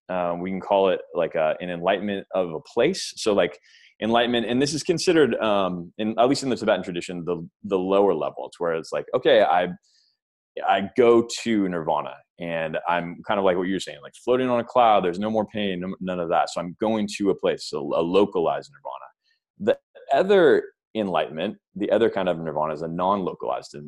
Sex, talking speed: male, 210 wpm